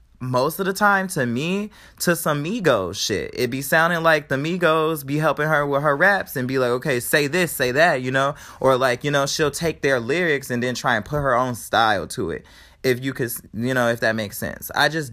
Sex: male